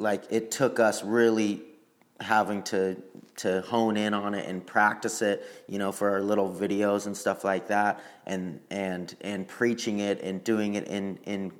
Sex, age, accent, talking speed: male, 30-49, American, 180 wpm